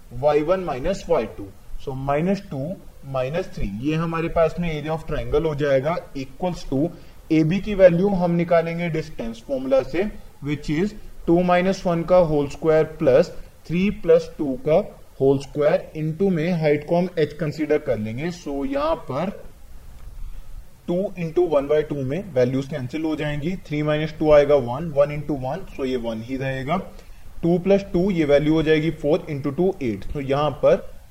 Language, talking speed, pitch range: Hindi, 175 wpm, 140-175 Hz